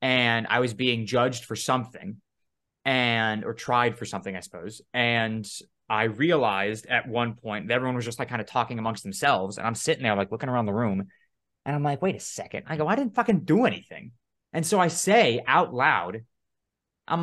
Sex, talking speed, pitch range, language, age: male, 205 wpm, 120-175 Hz, English, 20-39